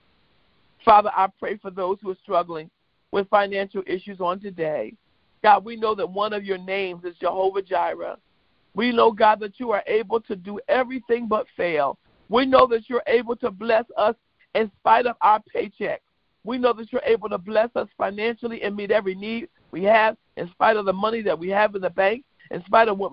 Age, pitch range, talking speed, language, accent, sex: 50-69, 190-230 Hz, 205 wpm, English, American, male